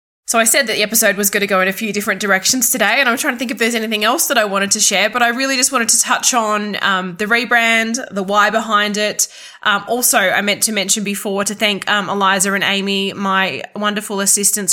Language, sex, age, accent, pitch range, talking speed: English, female, 20-39, Australian, 195-225 Hz, 250 wpm